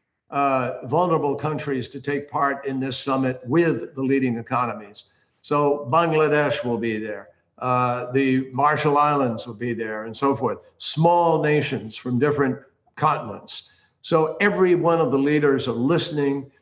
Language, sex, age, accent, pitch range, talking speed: English, male, 60-79, American, 130-165 Hz, 150 wpm